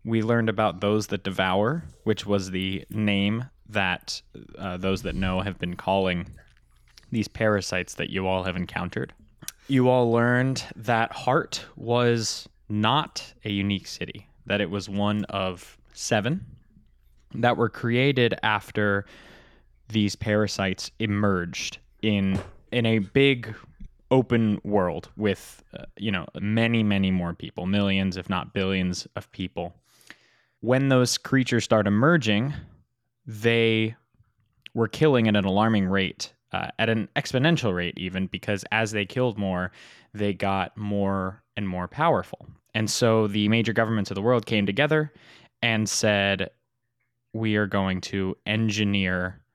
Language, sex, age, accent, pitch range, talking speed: English, male, 20-39, American, 95-115 Hz, 140 wpm